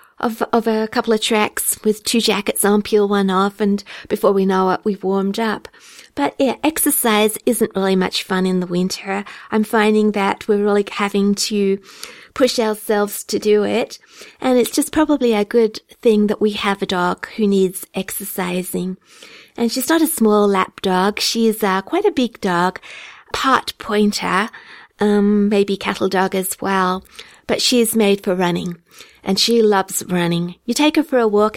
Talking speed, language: 180 wpm, English